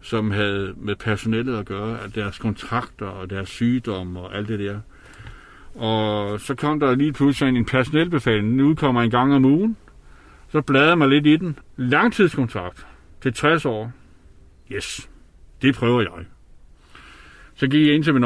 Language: Danish